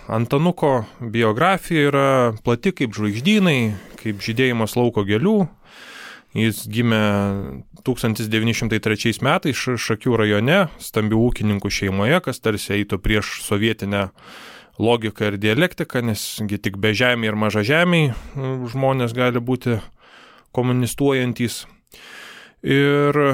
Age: 20-39